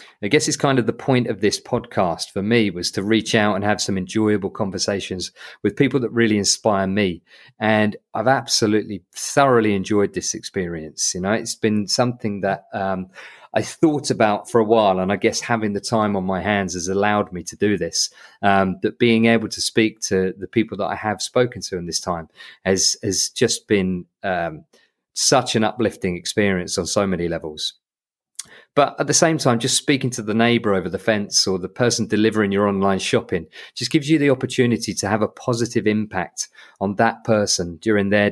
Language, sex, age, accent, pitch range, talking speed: English, male, 40-59, British, 100-120 Hz, 200 wpm